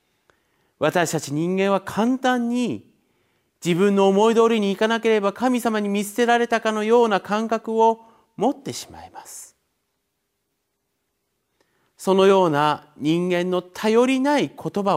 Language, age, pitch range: Japanese, 40-59, 155-225 Hz